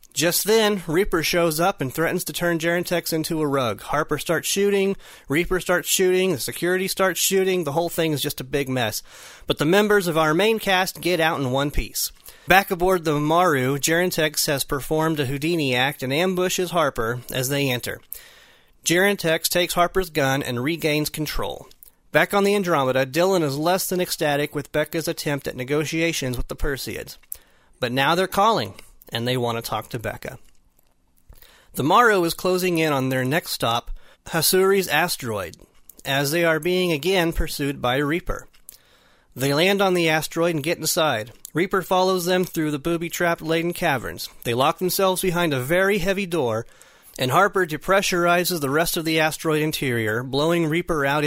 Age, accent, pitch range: 30-49, American, 140-180 Hz